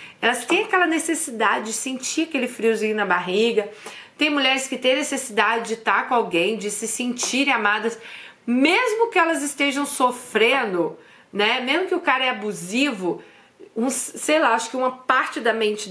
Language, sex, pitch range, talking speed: Portuguese, female, 210-260 Hz, 165 wpm